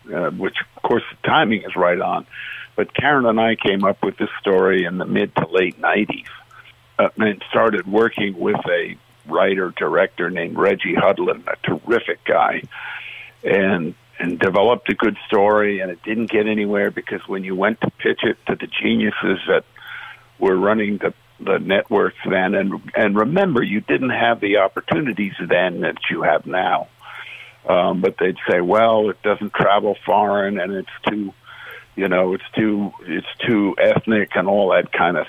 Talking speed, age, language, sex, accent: 175 wpm, 60-79, English, male, American